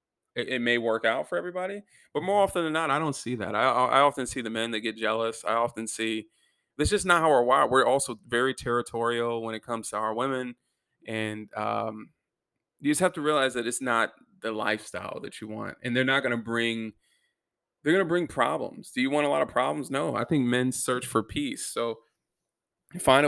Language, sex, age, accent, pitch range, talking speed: English, male, 20-39, American, 115-140 Hz, 220 wpm